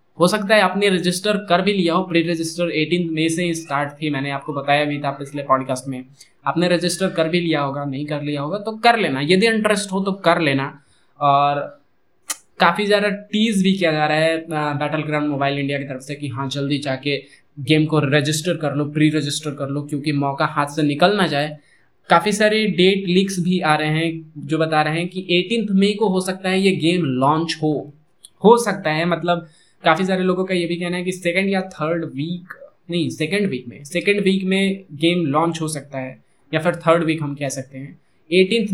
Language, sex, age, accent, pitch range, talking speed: Hindi, male, 20-39, native, 145-180 Hz, 215 wpm